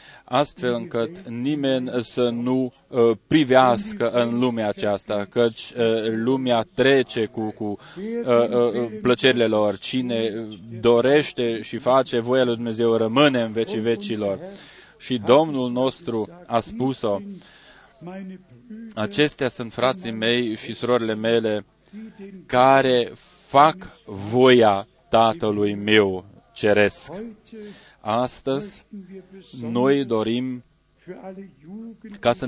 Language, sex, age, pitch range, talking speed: Romanian, male, 20-39, 115-140 Hz, 90 wpm